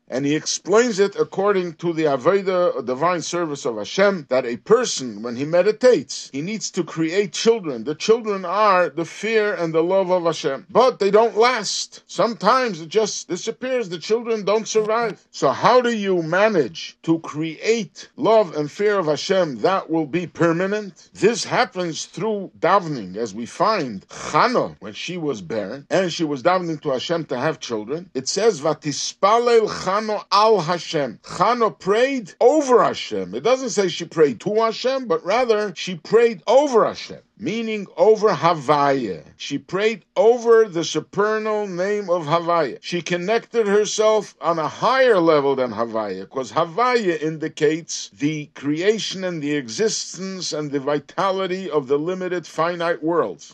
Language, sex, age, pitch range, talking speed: English, male, 50-69, 155-215 Hz, 160 wpm